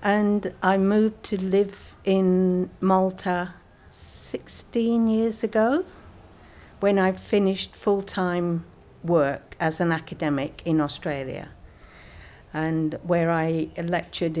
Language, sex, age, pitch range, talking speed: English, female, 50-69, 150-185 Hz, 100 wpm